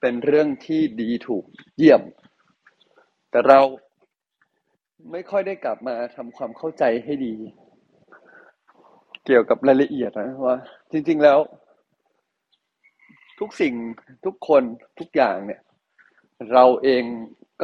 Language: Thai